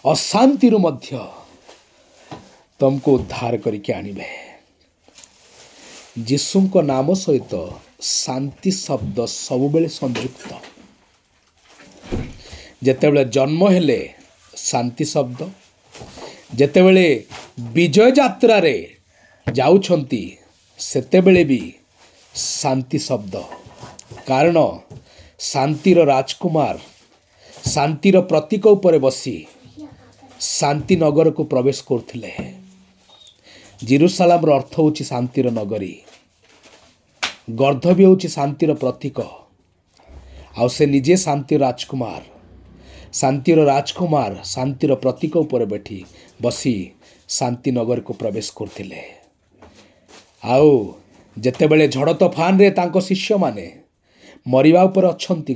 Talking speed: 70 wpm